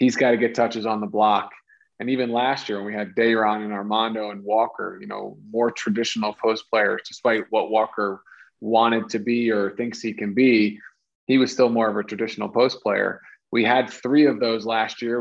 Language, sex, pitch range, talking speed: English, male, 110-125 Hz, 210 wpm